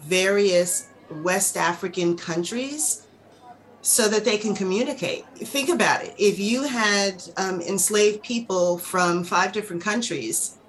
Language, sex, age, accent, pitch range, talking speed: English, female, 40-59, American, 175-205 Hz, 125 wpm